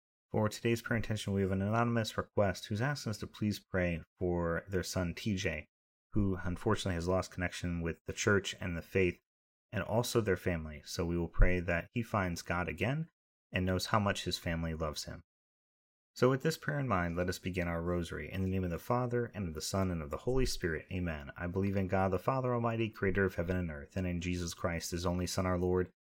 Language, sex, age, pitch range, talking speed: English, male, 30-49, 85-105 Hz, 230 wpm